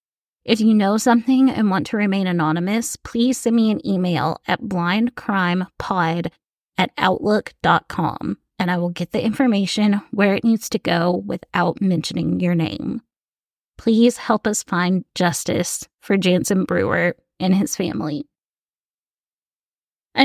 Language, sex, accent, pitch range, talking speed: English, female, American, 190-235 Hz, 135 wpm